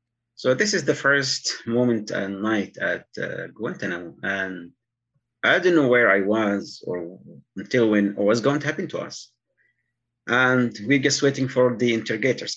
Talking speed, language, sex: 165 wpm, English, male